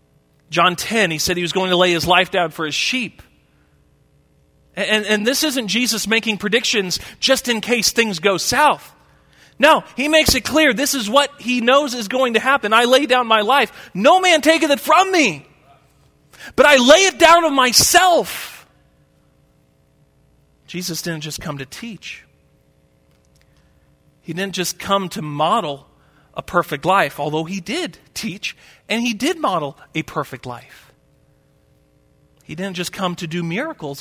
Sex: male